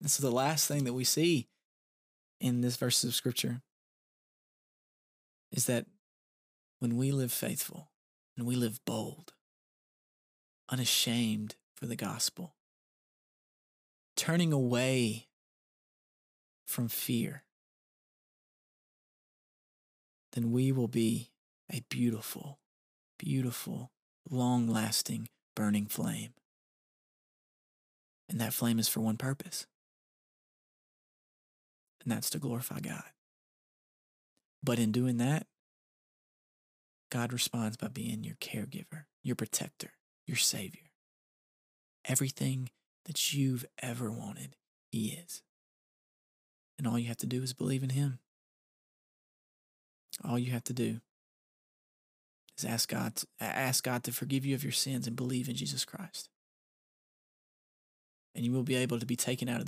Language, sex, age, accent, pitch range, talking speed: English, male, 20-39, American, 115-135 Hz, 115 wpm